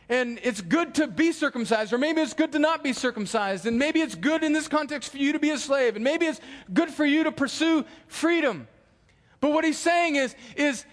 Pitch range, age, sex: 280-340 Hz, 40-59, male